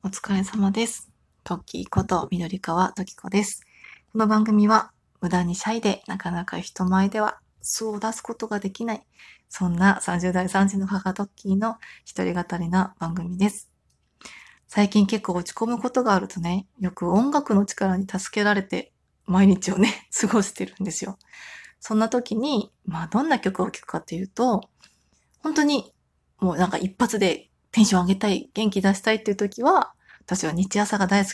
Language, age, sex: Japanese, 20-39, female